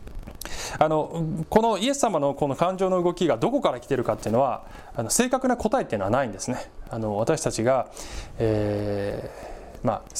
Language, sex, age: Japanese, male, 20-39